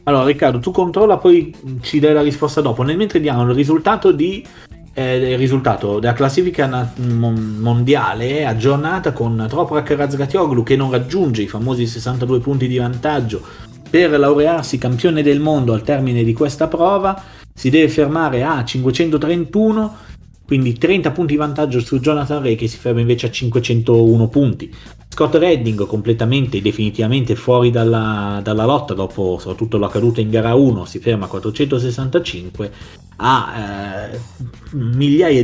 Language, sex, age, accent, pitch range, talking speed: Italian, male, 30-49, native, 115-145 Hz, 150 wpm